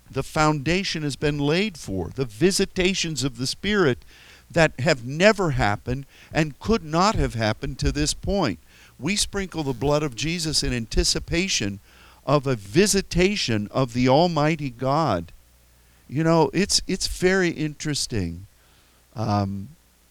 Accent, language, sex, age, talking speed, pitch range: American, English, male, 50-69, 135 wpm, 105-150 Hz